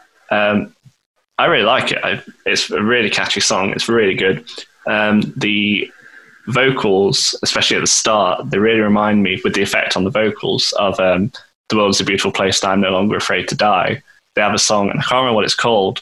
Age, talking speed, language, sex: 10-29, 205 wpm, English, male